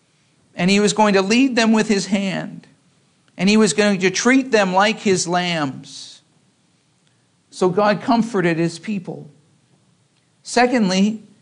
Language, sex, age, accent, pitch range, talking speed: English, male, 50-69, American, 160-215 Hz, 135 wpm